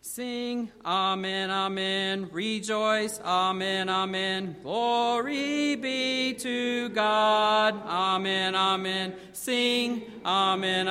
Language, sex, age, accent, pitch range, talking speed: English, male, 40-59, American, 175-210 Hz, 75 wpm